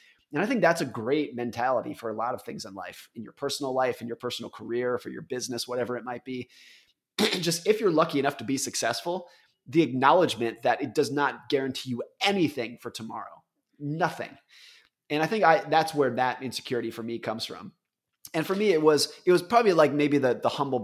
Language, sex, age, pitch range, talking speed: English, male, 30-49, 120-150 Hz, 215 wpm